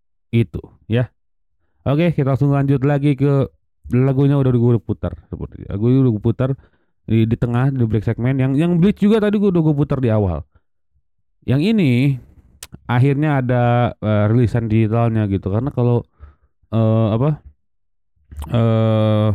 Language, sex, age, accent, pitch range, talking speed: Indonesian, male, 30-49, native, 105-140 Hz, 150 wpm